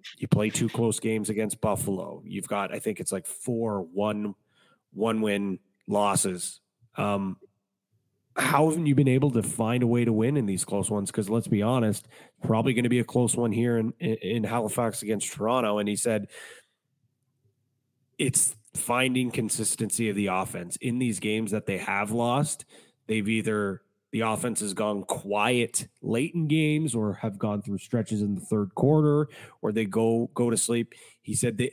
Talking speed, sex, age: 180 wpm, male, 30-49